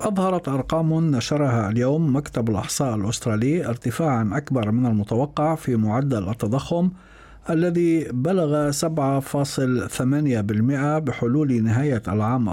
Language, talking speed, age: Arabic, 95 wpm, 60-79